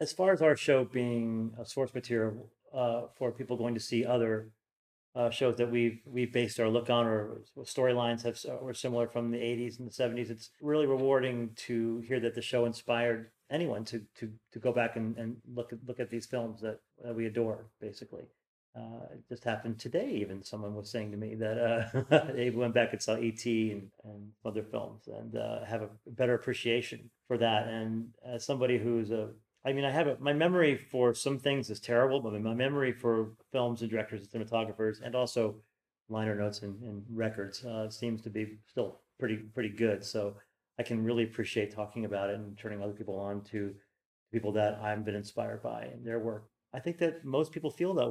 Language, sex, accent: English, male, American